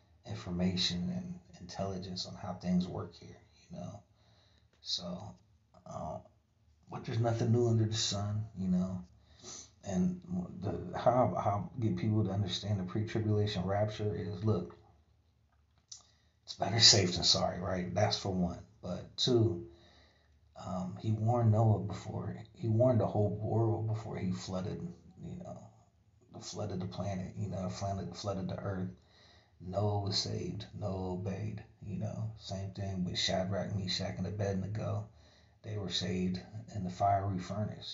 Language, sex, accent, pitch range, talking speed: English, male, American, 90-105 Hz, 145 wpm